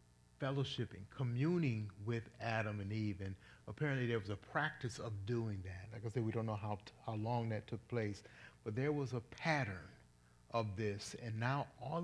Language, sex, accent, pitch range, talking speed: English, male, American, 100-120 Hz, 190 wpm